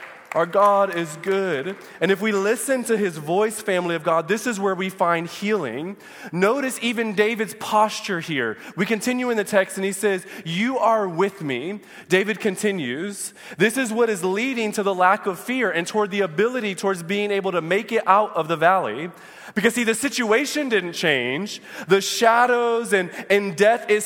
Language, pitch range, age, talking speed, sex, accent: English, 195-240 Hz, 20-39, 185 wpm, male, American